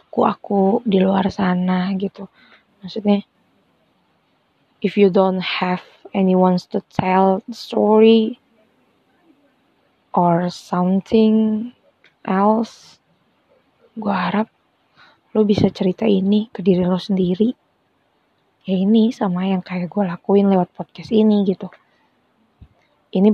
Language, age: Indonesian, 20-39